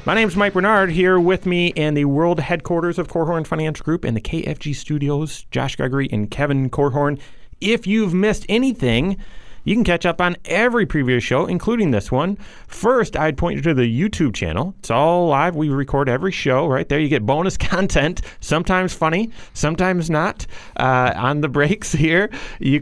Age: 30-49